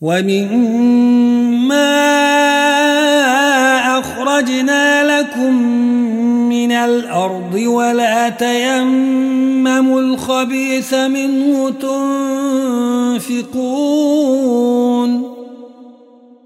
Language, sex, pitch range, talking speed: Arabic, male, 240-270 Hz, 35 wpm